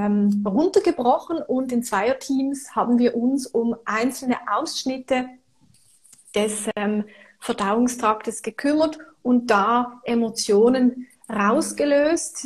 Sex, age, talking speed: female, 30-49, 85 wpm